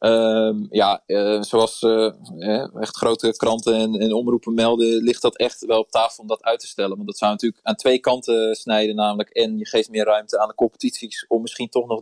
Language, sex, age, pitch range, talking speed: Dutch, male, 20-39, 110-125 Hz, 220 wpm